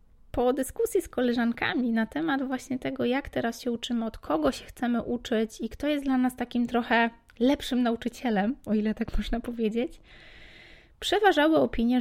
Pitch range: 220-265 Hz